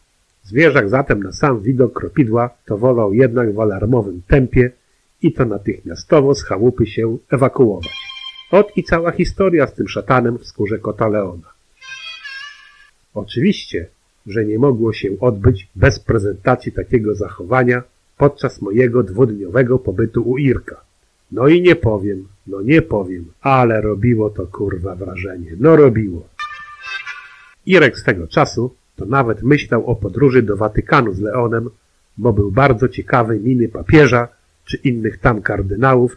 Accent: native